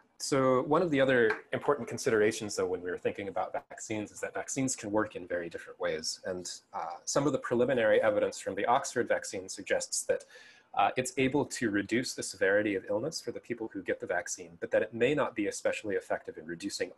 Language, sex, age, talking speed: English, male, 30-49, 220 wpm